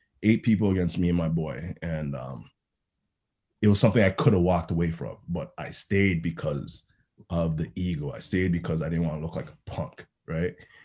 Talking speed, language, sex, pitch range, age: 205 wpm, English, male, 85-100 Hz, 20-39